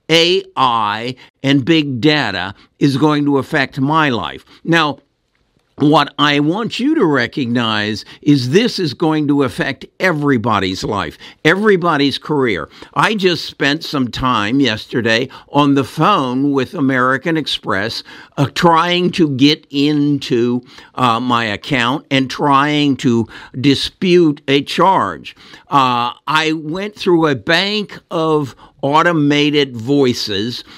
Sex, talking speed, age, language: male, 120 wpm, 60-79, English